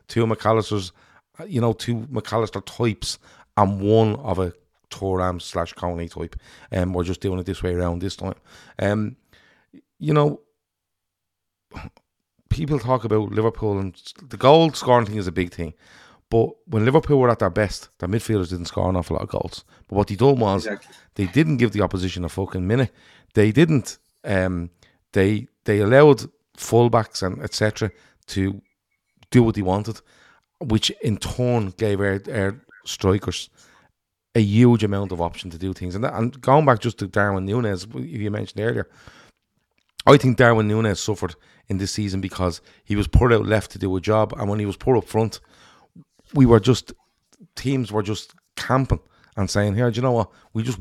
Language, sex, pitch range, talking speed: English, male, 95-115 Hz, 180 wpm